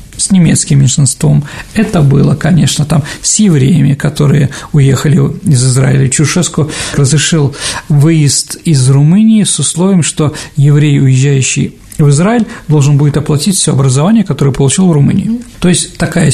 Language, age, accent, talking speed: Russian, 50-69, native, 135 wpm